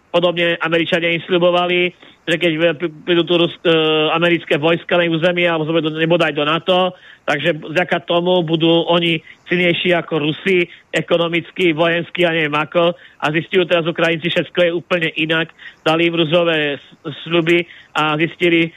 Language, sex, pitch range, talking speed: Slovak, male, 160-175 Hz, 170 wpm